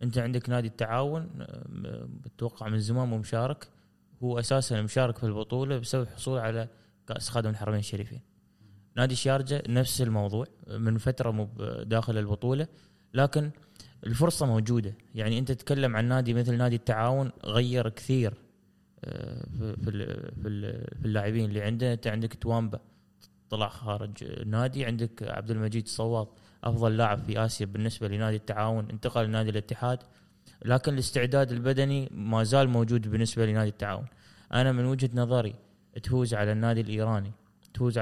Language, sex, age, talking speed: Arabic, male, 20-39, 135 wpm